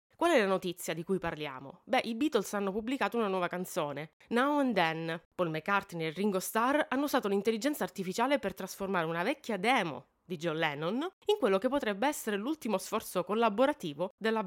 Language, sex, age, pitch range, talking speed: Italian, female, 20-39, 175-245 Hz, 185 wpm